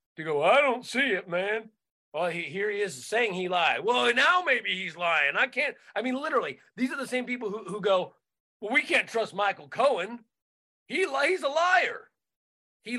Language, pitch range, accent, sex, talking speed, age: English, 200-295 Hz, American, male, 205 wpm, 30-49